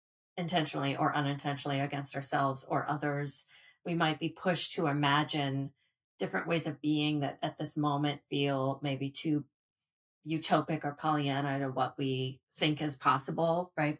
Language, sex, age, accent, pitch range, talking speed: English, female, 30-49, American, 140-165 Hz, 145 wpm